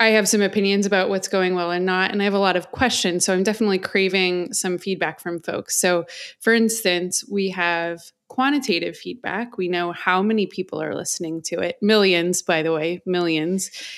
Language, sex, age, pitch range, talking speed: English, female, 20-39, 175-200 Hz, 200 wpm